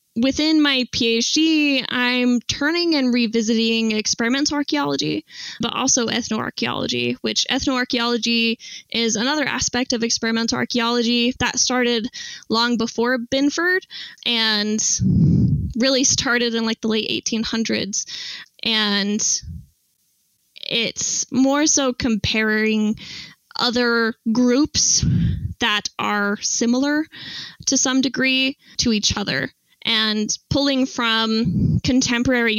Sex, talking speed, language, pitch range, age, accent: female, 100 wpm, English, 220-255 Hz, 10-29, American